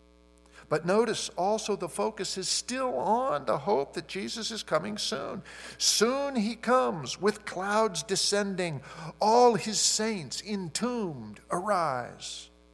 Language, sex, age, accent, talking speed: English, male, 50-69, American, 120 wpm